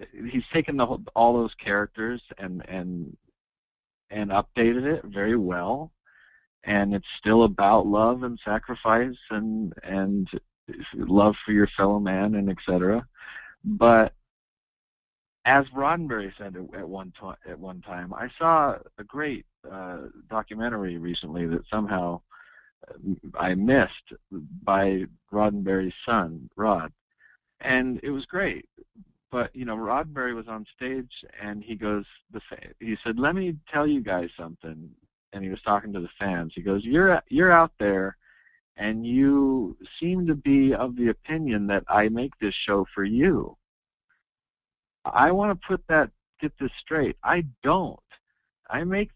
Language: English